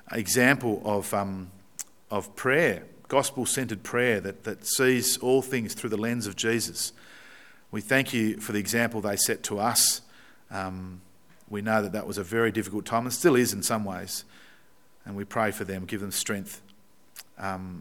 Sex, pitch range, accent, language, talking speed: male, 95-115 Hz, Australian, English, 175 wpm